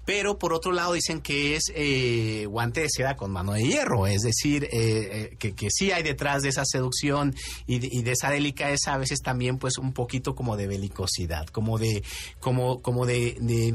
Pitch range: 115-160 Hz